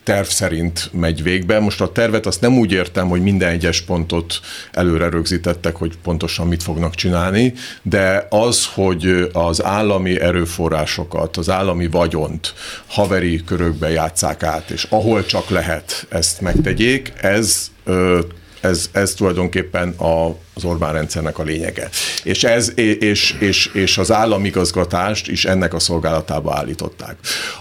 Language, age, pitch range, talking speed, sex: Hungarian, 50-69, 85-105 Hz, 130 wpm, male